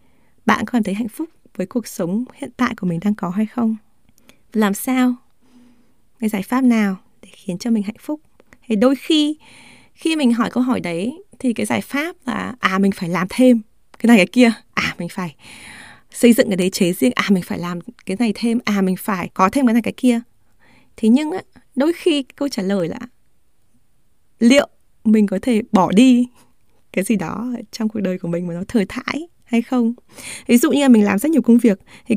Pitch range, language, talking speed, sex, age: 200-255 Hz, Vietnamese, 215 wpm, female, 20-39